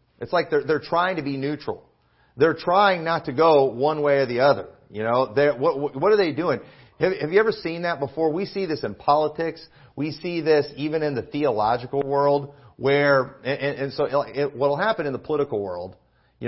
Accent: American